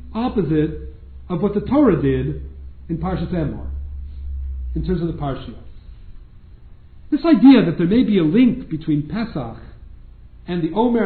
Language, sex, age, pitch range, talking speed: English, male, 50-69, 150-235 Hz, 145 wpm